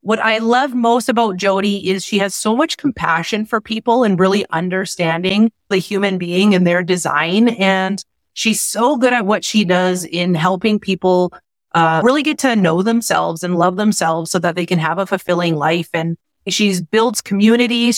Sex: female